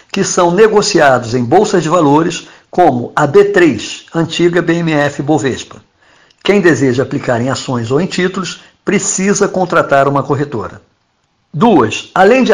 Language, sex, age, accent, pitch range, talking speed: Portuguese, male, 60-79, Brazilian, 145-195 Hz, 135 wpm